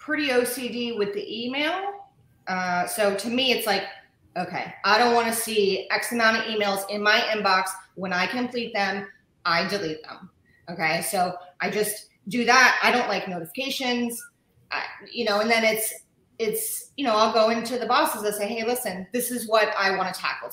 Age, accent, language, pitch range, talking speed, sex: 30-49, American, English, 180-225 Hz, 195 wpm, female